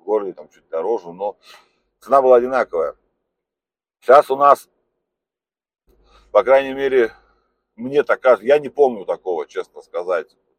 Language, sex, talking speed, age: Russian, male, 125 wpm, 40-59